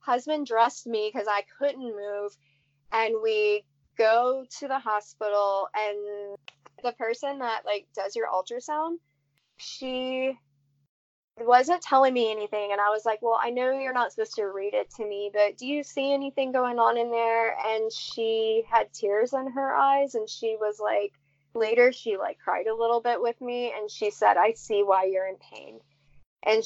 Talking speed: 180 wpm